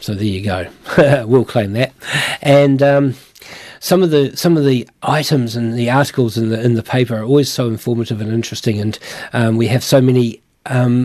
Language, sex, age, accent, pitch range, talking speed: English, male, 40-59, Australian, 115-130 Hz, 200 wpm